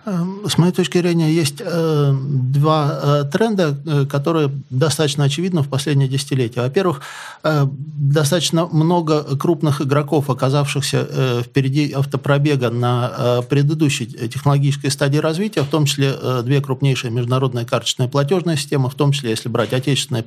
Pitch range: 130-155 Hz